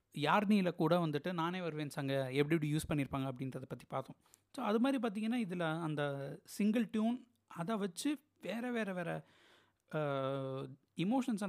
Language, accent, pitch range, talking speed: Tamil, native, 145-210 Hz, 140 wpm